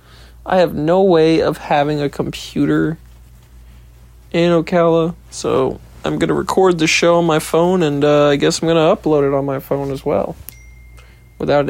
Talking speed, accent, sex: 180 wpm, American, male